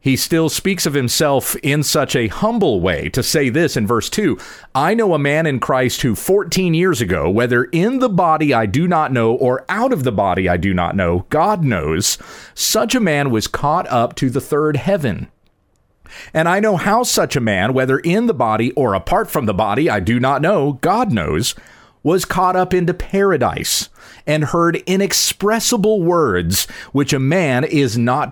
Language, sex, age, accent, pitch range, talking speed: English, male, 40-59, American, 120-185 Hz, 195 wpm